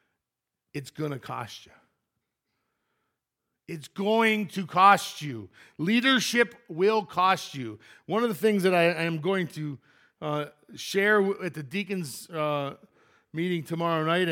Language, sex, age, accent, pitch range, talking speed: English, male, 50-69, American, 135-195 Hz, 140 wpm